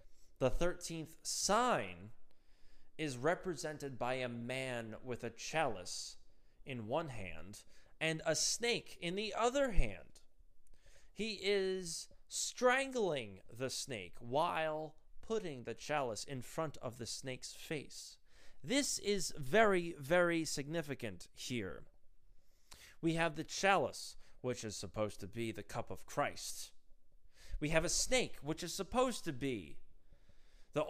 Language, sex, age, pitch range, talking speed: English, male, 30-49, 110-175 Hz, 125 wpm